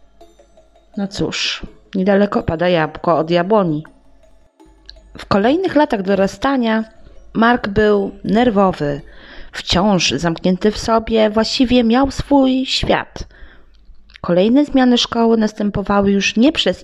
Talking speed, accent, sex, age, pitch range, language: 105 wpm, native, female, 20-39, 180-235 Hz, Polish